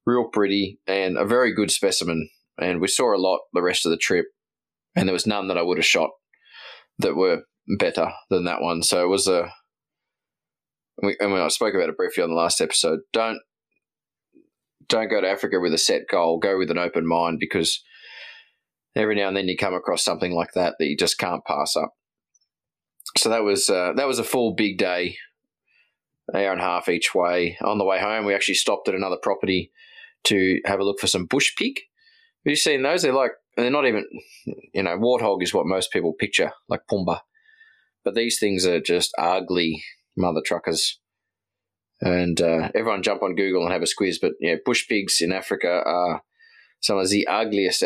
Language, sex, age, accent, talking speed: English, male, 20-39, Australian, 205 wpm